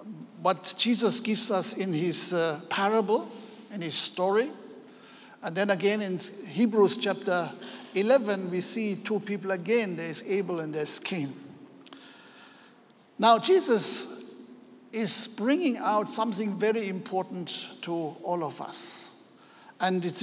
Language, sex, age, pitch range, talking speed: English, male, 60-79, 185-225 Hz, 130 wpm